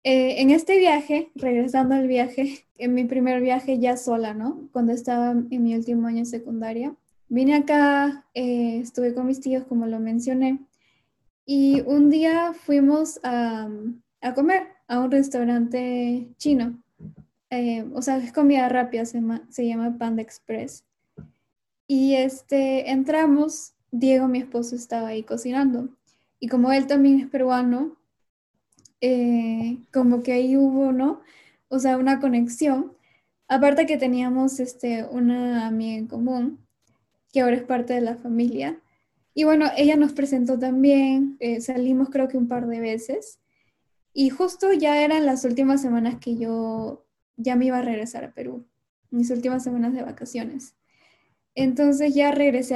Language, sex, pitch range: Spanish, female, 240-275 Hz